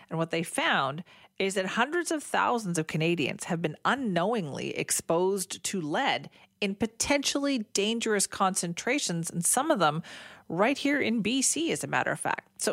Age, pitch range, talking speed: 40-59, 170-230 Hz, 165 wpm